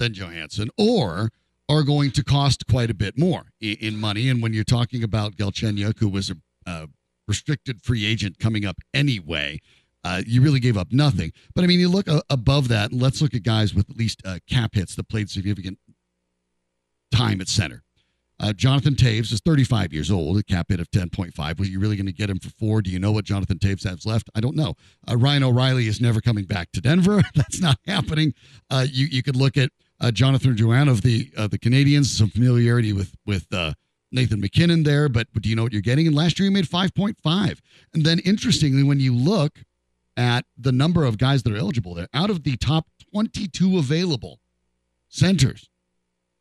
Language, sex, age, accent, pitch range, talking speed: English, male, 50-69, American, 100-140 Hz, 210 wpm